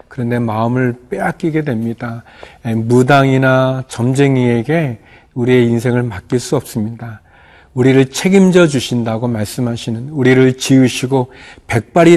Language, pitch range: Korean, 120-145 Hz